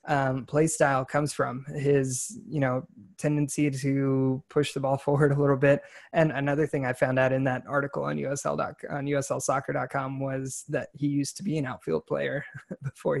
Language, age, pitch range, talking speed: English, 20-39, 135-155 Hz, 180 wpm